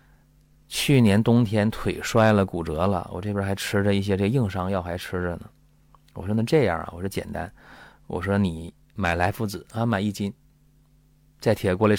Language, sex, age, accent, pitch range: Chinese, male, 30-49, native, 90-120 Hz